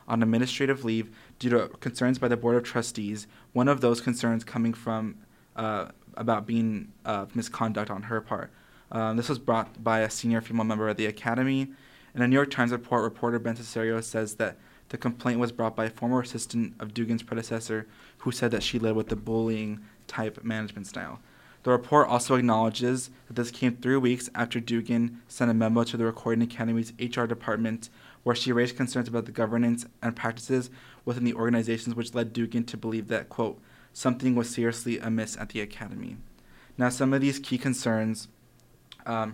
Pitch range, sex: 115-125 Hz, male